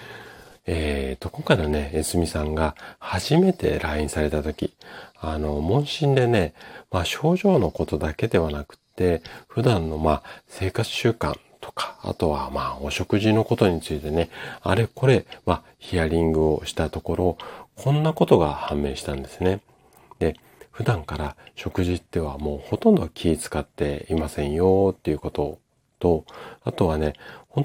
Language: Japanese